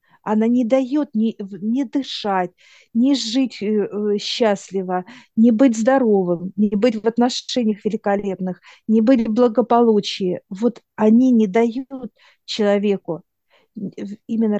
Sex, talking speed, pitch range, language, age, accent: female, 110 wpm, 200-240 Hz, Russian, 50-69, native